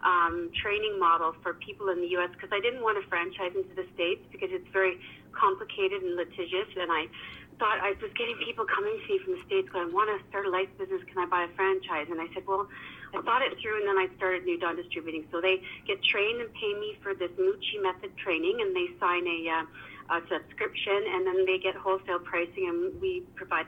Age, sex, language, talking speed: 40-59, female, English, 230 wpm